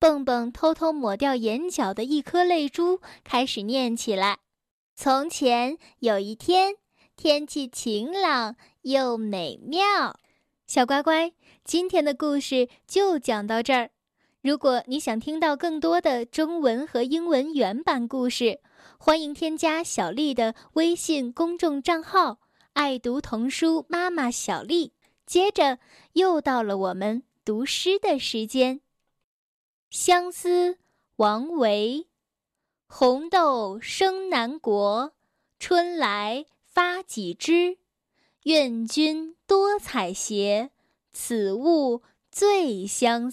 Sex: female